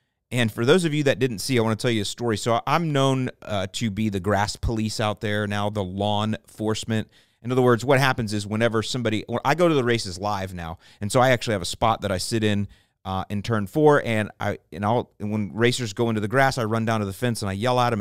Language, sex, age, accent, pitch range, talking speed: English, male, 30-49, American, 100-125 Hz, 275 wpm